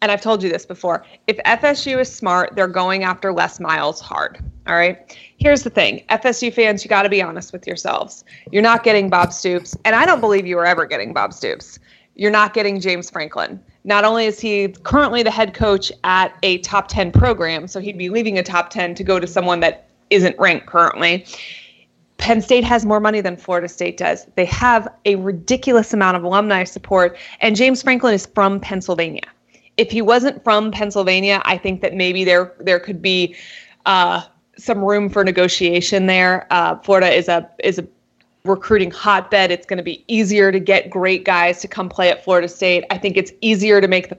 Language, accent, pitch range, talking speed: English, American, 180-215 Hz, 205 wpm